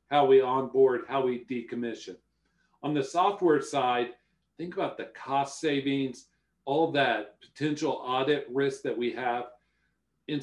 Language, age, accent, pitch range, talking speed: English, 50-69, American, 130-150 Hz, 140 wpm